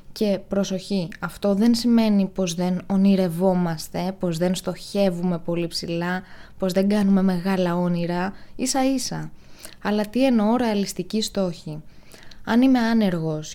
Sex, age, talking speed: female, 20-39, 125 wpm